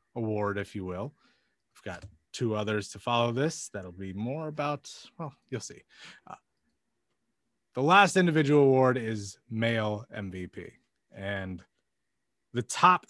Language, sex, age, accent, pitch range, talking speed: English, male, 30-49, American, 105-150 Hz, 135 wpm